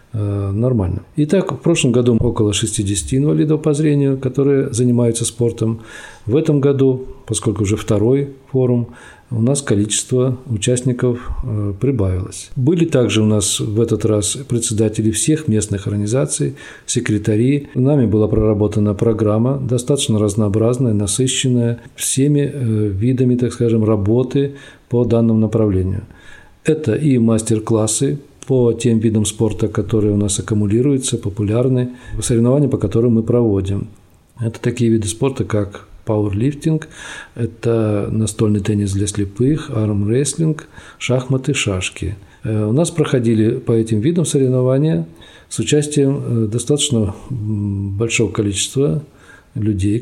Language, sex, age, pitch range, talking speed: Russian, male, 40-59, 110-135 Hz, 115 wpm